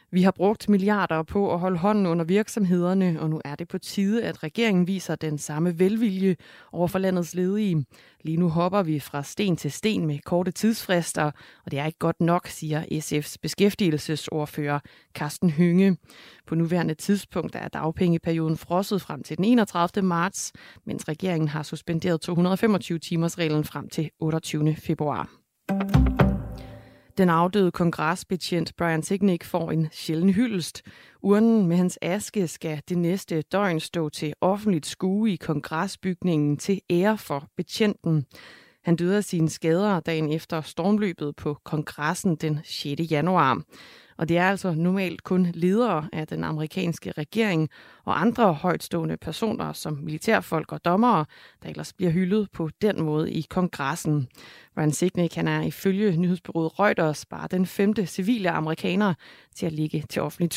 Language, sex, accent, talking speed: Danish, female, native, 155 wpm